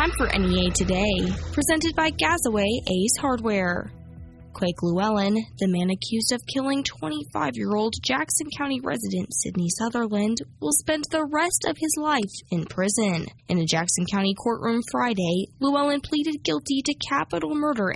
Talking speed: 145 wpm